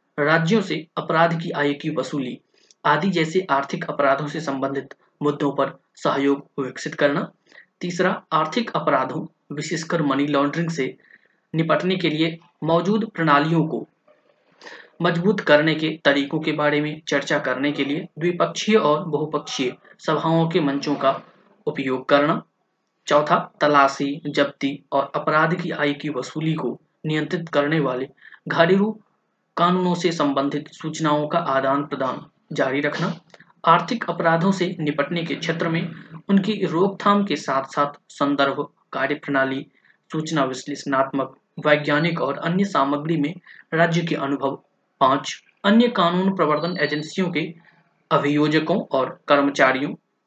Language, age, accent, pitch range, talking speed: Hindi, 20-39, native, 145-170 Hz, 130 wpm